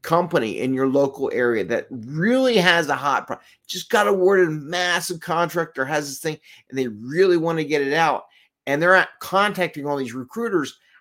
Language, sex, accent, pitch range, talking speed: English, male, American, 125-175 Hz, 190 wpm